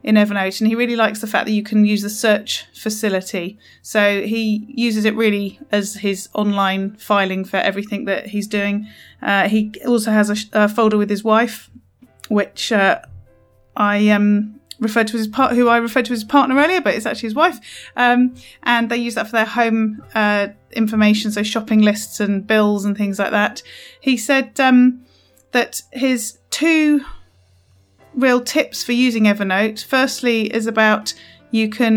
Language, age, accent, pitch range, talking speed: English, 30-49, British, 205-235 Hz, 180 wpm